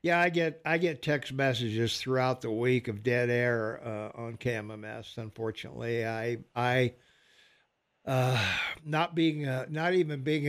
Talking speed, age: 150 wpm, 60-79